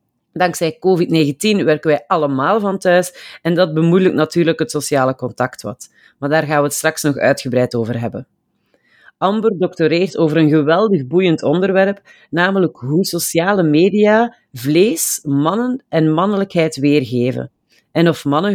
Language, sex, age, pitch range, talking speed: Dutch, female, 40-59, 150-185 Hz, 140 wpm